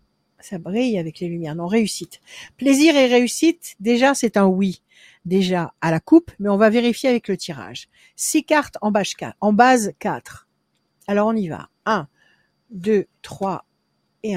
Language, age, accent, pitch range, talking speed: French, 60-79, French, 180-250 Hz, 160 wpm